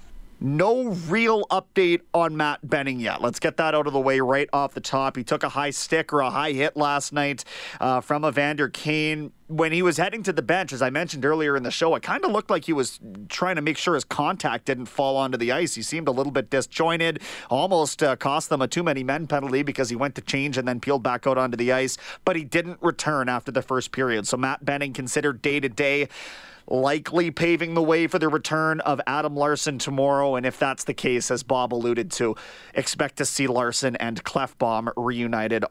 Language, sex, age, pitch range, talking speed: English, male, 30-49, 130-170 Hz, 225 wpm